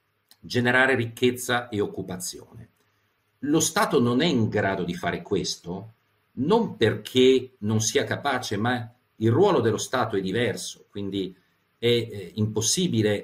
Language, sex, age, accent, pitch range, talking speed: Italian, male, 50-69, native, 105-125 Hz, 130 wpm